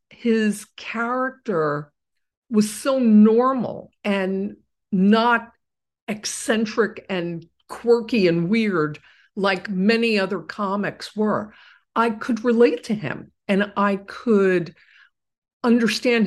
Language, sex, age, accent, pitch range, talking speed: English, female, 50-69, American, 195-245 Hz, 95 wpm